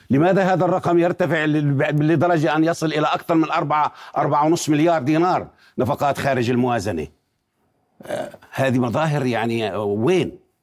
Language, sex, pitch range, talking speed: Arabic, male, 125-160 Hz, 125 wpm